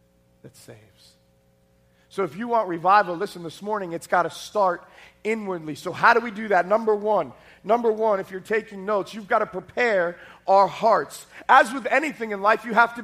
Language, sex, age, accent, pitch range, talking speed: English, male, 40-59, American, 170-235 Hz, 200 wpm